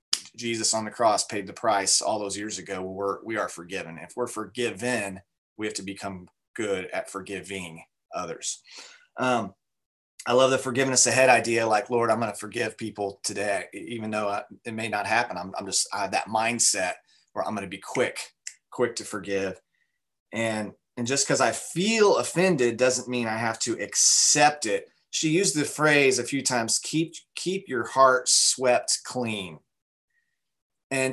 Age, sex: 30-49, male